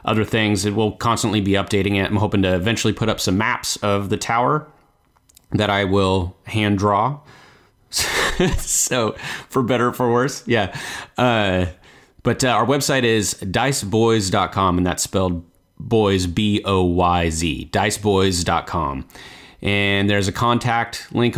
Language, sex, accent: English, male, American